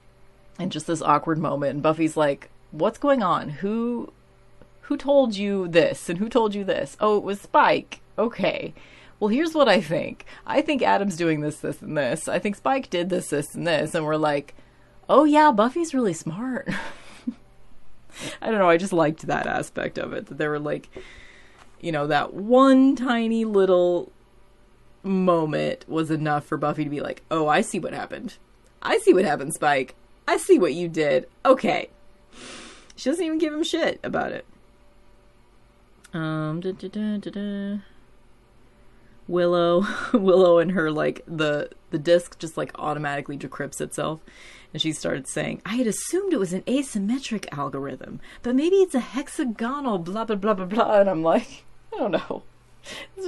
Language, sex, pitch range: English, female, 155-235 Hz